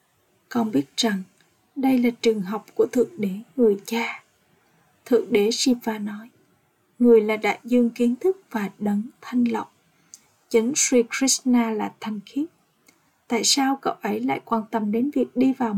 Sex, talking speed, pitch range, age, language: female, 165 wpm, 215-250 Hz, 20-39, Vietnamese